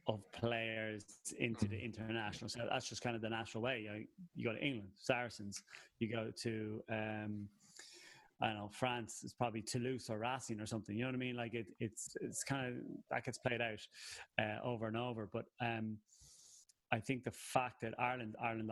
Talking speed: 200 wpm